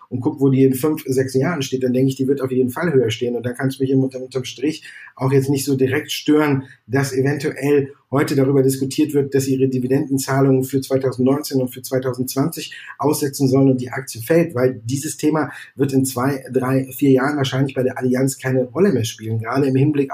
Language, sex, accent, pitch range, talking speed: German, male, German, 125-140 Hz, 215 wpm